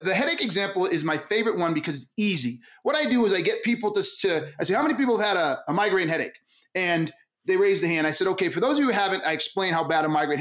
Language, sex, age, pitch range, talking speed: English, male, 30-49, 185-260 Hz, 290 wpm